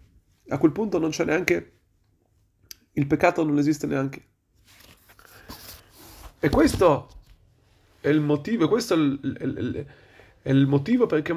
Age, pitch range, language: 30-49, 125-175 Hz, Italian